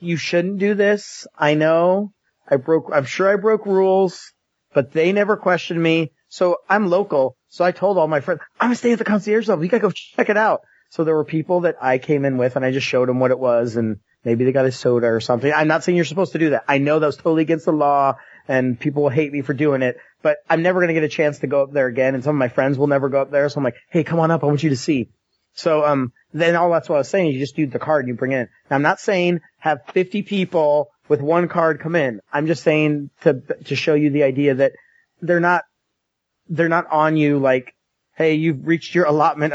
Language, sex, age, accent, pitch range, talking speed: English, male, 30-49, American, 140-175 Hz, 275 wpm